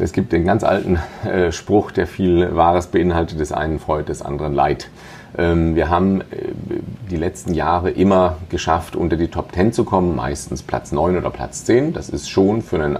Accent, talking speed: German, 200 wpm